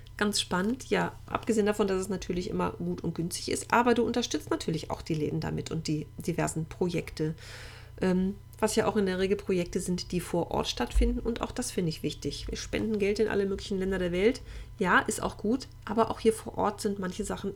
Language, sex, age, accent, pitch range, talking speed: German, female, 40-59, German, 155-210 Hz, 220 wpm